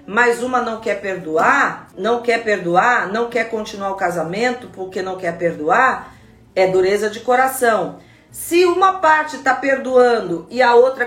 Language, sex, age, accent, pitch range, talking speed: Portuguese, female, 40-59, Brazilian, 210-275 Hz, 155 wpm